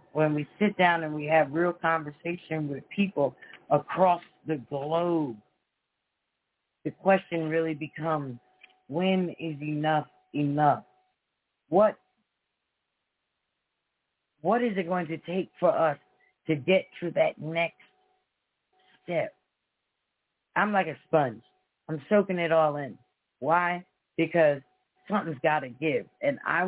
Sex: female